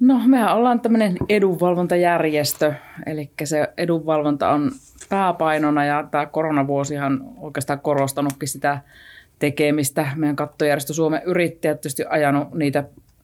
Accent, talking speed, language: native, 115 wpm, Finnish